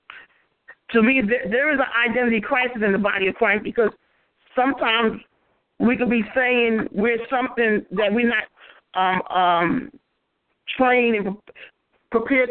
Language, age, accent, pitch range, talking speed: English, 40-59, American, 205-250 Hz, 135 wpm